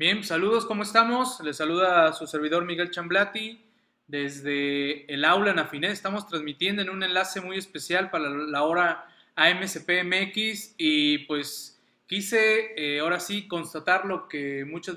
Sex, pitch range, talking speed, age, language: male, 150-185 Hz, 150 wpm, 20-39, Spanish